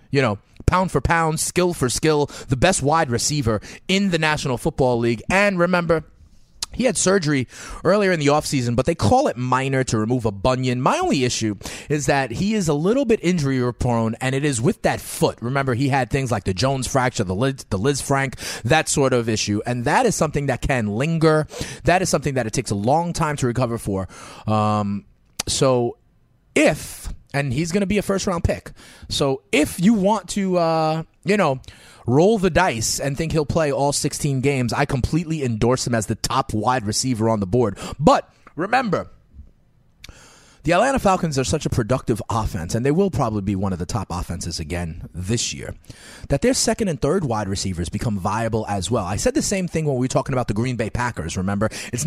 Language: English